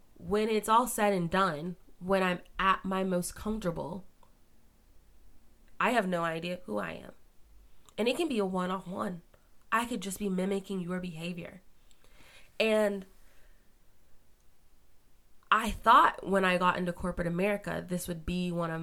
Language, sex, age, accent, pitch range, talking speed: English, female, 20-39, American, 170-195 Hz, 155 wpm